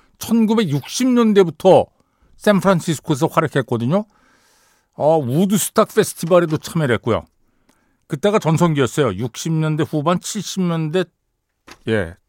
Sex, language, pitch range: male, Korean, 120-195 Hz